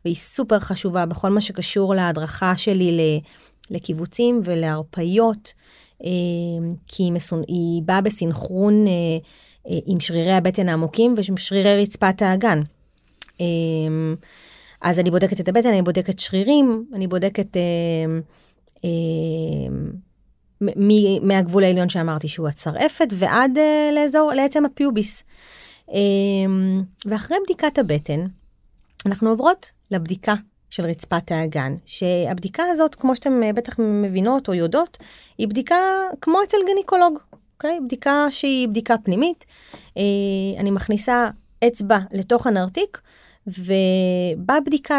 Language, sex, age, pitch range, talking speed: Hebrew, female, 30-49, 180-235 Hz, 100 wpm